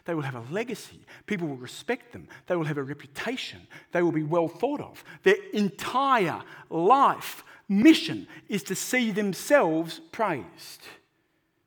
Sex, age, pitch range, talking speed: male, 60-79, 140-190 Hz, 150 wpm